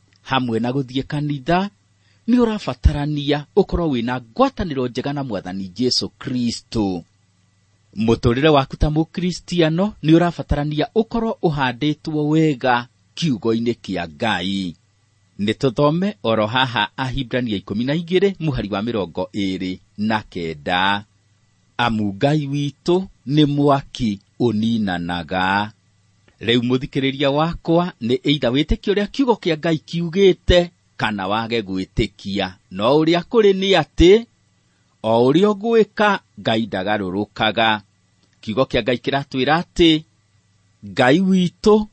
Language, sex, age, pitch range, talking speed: English, male, 40-59, 105-165 Hz, 100 wpm